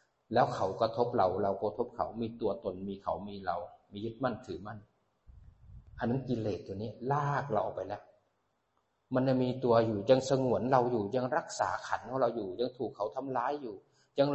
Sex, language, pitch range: male, Thai, 115-140 Hz